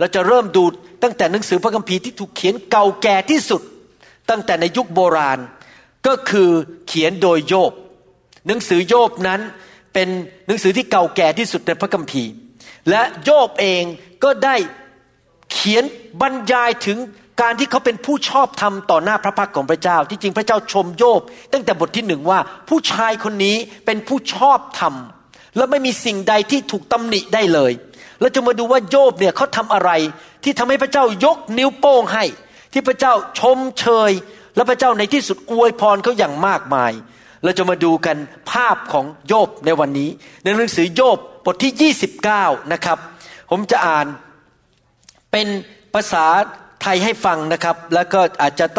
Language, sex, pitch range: Thai, male, 175-245 Hz